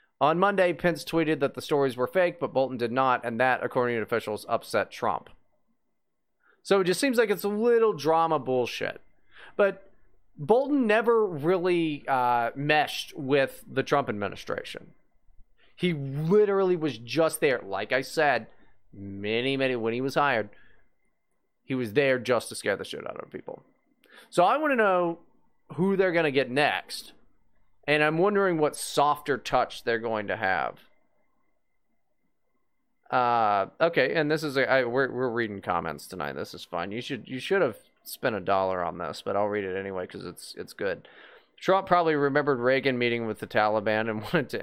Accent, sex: American, male